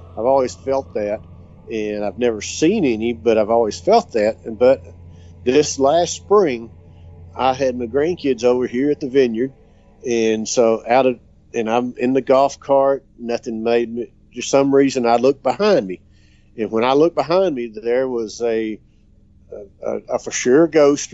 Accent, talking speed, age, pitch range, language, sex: American, 175 wpm, 50-69, 110-130 Hz, English, male